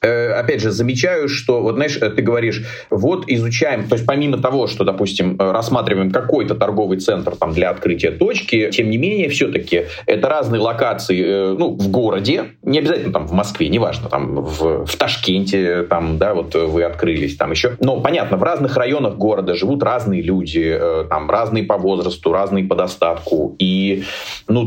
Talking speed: 170 wpm